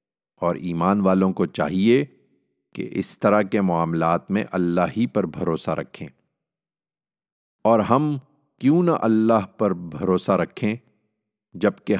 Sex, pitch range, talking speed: male, 90-115 Hz, 125 wpm